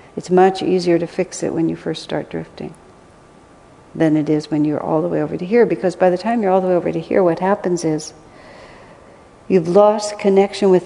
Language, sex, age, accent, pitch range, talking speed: English, female, 60-79, American, 160-190 Hz, 220 wpm